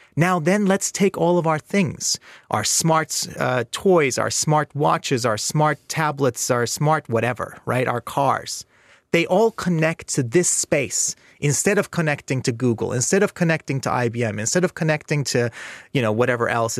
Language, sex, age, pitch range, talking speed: Danish, male, 30-49, 130-200 Hz, 170 wpm